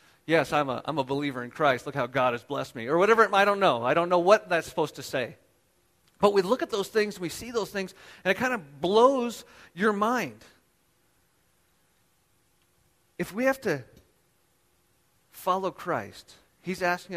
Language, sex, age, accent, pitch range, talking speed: English, male, 40-59, American, 145-195 Hz, 185 wpm